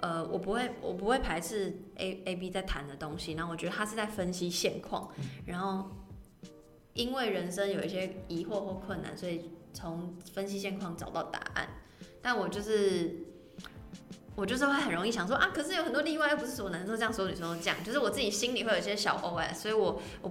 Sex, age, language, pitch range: female, 20-39, Chinese, 170-210 Hz